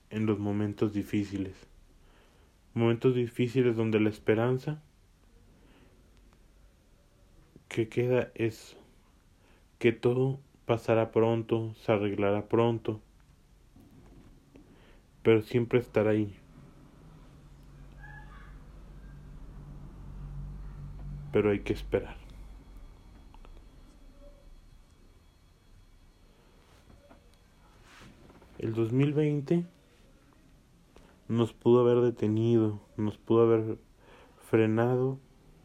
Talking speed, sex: 60 wpm, male